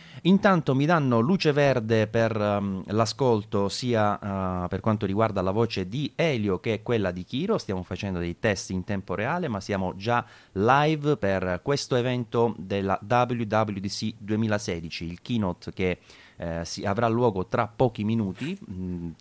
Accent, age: native, 30-49